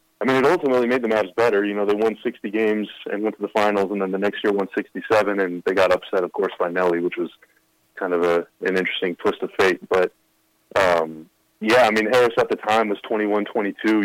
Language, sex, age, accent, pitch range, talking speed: English, male, 20-39, American, 90-105 Hz, 235 wpm